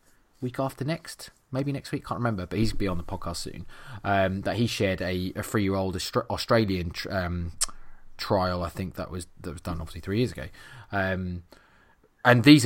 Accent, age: British, 20-39